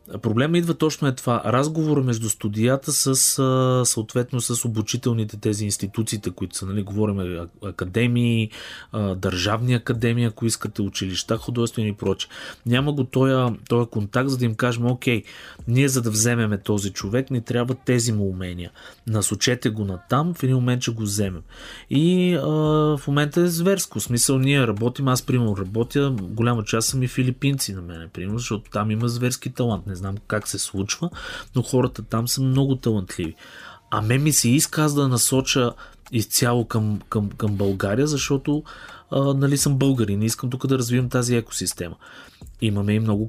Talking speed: 165 wpm